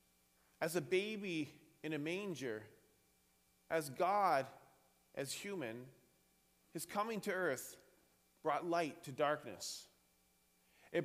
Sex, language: male, English